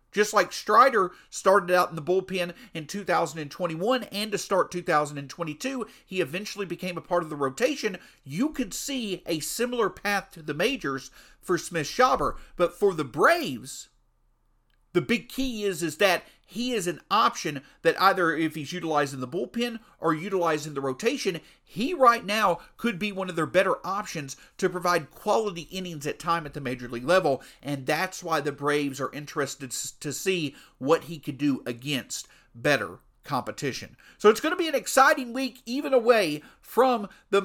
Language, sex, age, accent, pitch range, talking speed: English, male, 50-69, American, 155-220 Hz, 175 wpm